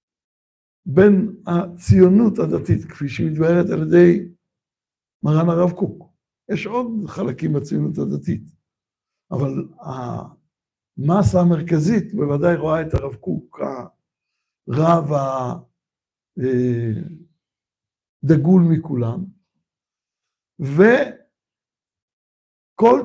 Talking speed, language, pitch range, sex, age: 75 wpm, Hebrew, 160-205 Hz, male, 60-79